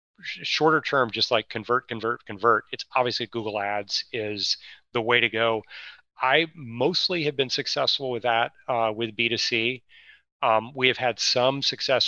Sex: male